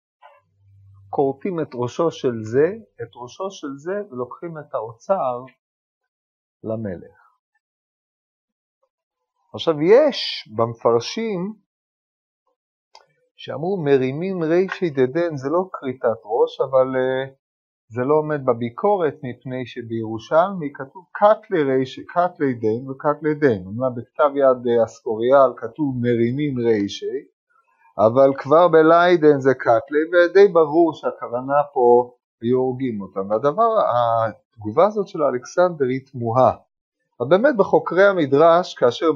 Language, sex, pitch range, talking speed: Hebrew, male, 120-170 Hz, 105 wpm